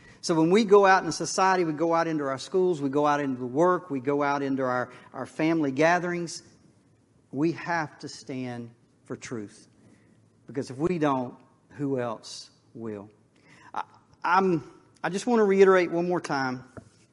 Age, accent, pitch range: 40-59, American, 125-160 Hz